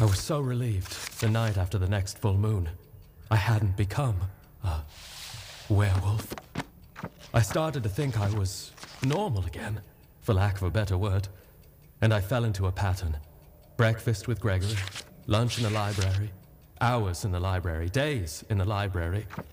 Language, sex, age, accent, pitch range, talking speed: English, male, 30-49, British, 95-115 Hz, 155 wpm